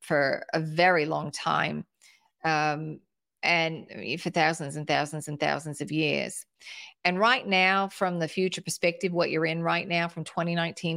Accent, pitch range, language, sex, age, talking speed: American, 160-200 Hz, English, female, 40-59, 160 wpm